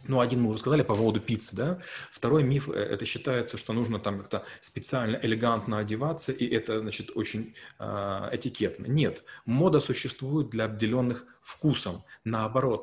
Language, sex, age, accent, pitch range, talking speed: Russian, male, 30-49, native, 110-140 Hz, 155 wpm